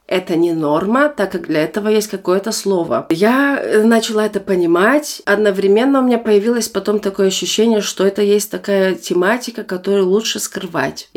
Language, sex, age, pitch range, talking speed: Russian, female, 30-49, 175-215 Hz, 155 wpm